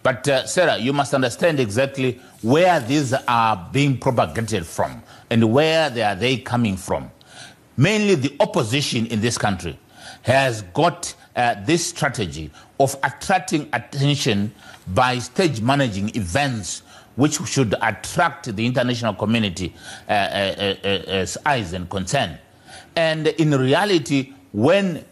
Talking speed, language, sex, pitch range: 125 wpm, English, male, 105-145 Hz